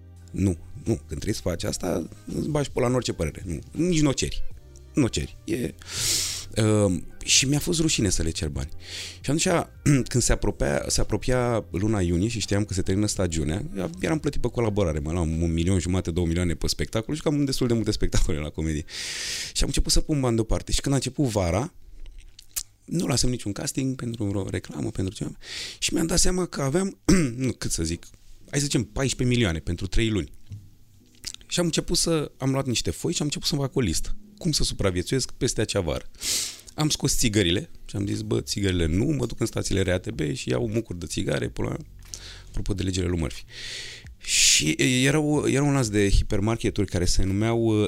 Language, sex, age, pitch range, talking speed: Romanian, male, 30-49, 90-125 Hz, 205 wpm